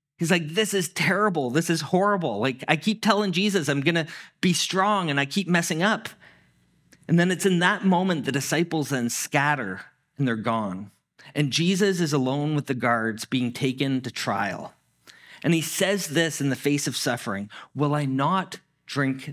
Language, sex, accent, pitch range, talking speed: English, male, American, 135-175 Hz, 185 wpm